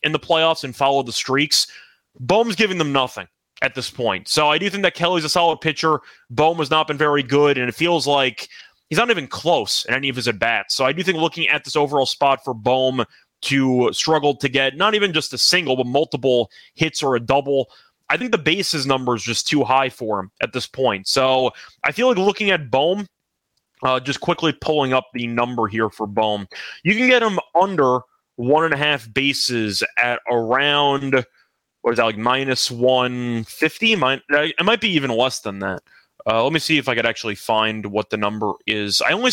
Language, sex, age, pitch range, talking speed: English, male, 30-49, 120-155 Hz, 210 wpm